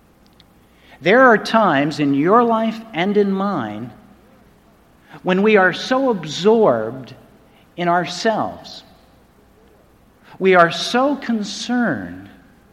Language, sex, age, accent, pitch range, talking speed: English, male, 50-69, American, 140-210 Hz, 95 wpm